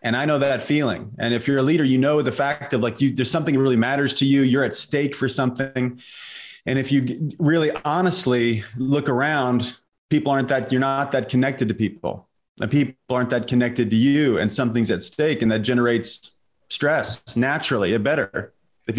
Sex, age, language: male, 30-49, English